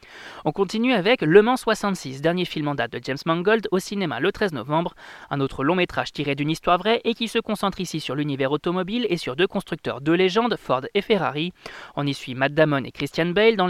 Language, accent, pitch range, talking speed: French, French, 145-195 Hz, 230 wpm